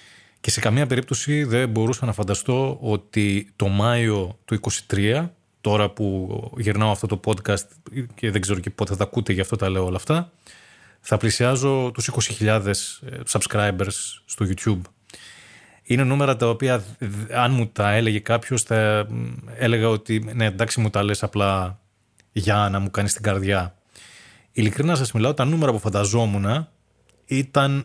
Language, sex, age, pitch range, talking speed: Greek, male, 20-39, 105-125 Hz, 155 wpm